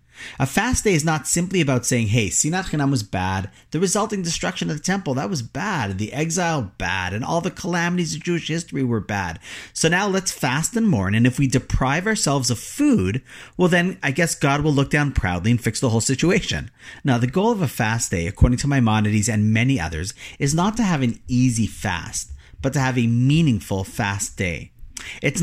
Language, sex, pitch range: English, male, 105-160 Hz